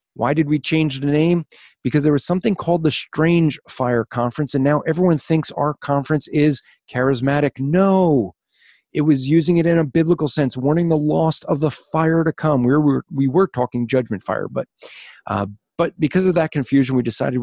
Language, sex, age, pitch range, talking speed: English, male, 40-59, 125-155 Hz, 195 wpm